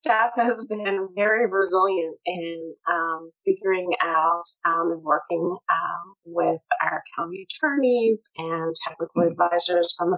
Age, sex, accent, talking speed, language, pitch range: 30-49, female, American, 125 wpm, English, 140-185 Hz